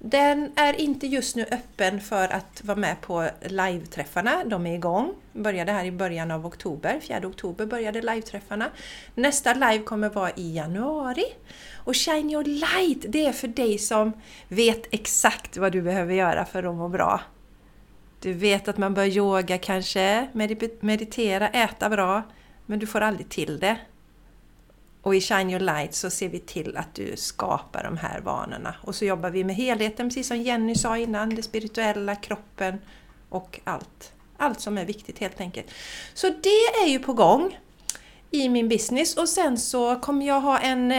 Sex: female